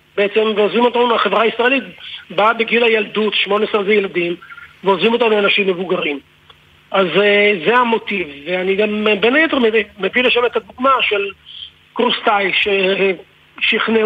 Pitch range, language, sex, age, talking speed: 195-230 Hz, Hebrew, male, 50-69, 120 wpm